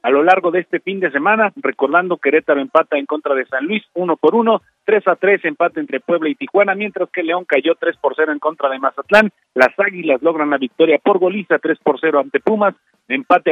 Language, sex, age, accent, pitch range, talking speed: Spanish, male, 50-69, Mexican, 130-185 Hz, 225 wpm